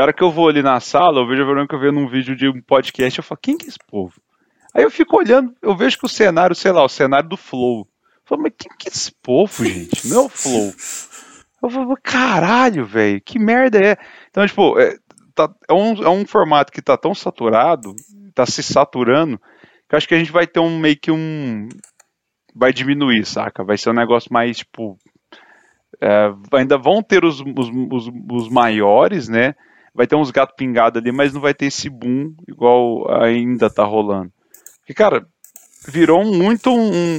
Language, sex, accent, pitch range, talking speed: Portuguese, male, Brazilian, 125-190 Hz, 210 wpm